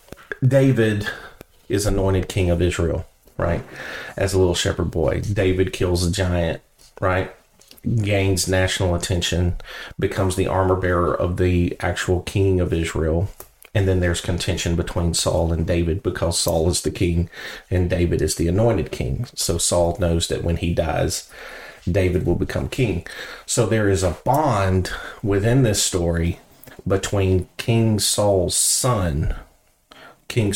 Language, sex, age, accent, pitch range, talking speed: English, male, 40-59, American, 85-100 Hz, 145 wpm